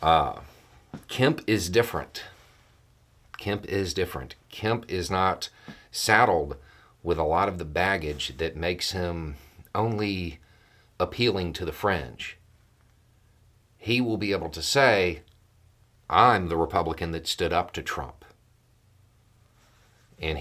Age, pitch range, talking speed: 40-59, 80-110 Hz, 120 wpm